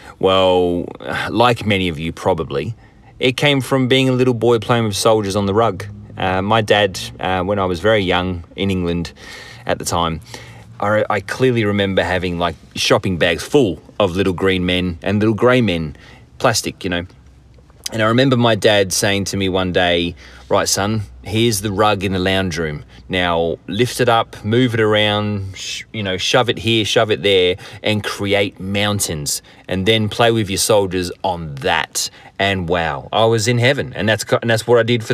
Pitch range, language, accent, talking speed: 95-120 Hz, English, Australian, 195 wpm